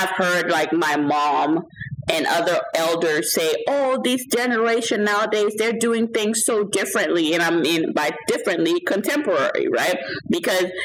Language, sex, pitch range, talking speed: English, female, 170-230 Hz, 145 wpm